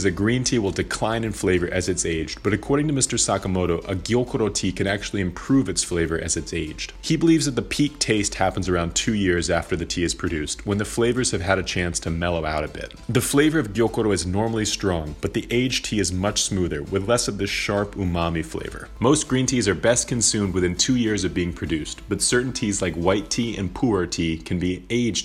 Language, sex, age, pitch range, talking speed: English, male, 30-49, 90-115 Hz, 235 wpm